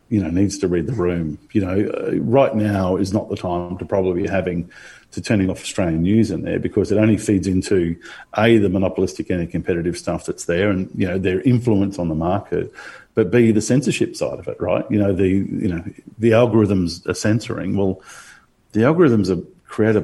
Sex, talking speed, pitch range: male, 210 wpm, 90-110 Hz